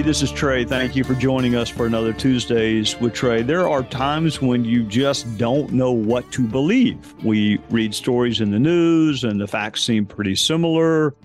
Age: 50-69